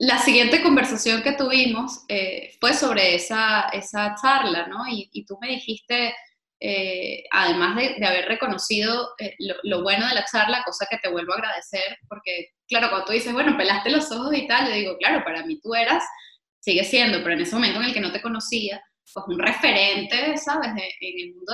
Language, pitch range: Spanish, 200-270 Hz